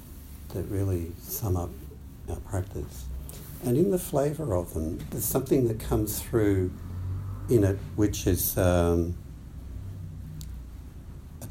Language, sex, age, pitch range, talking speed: English, male, 60-79, 85-110 Hz, 120 wpm